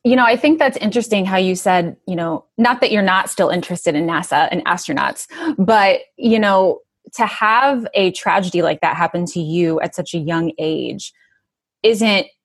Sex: female